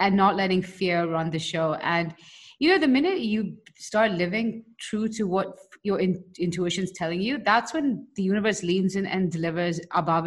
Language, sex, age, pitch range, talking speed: English, female, 30-49, 175-230 Hz, 185 wpm